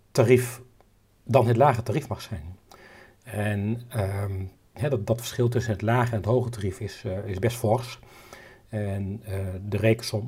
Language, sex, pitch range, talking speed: Dutch, male, 105-130 Hz, 170 wpm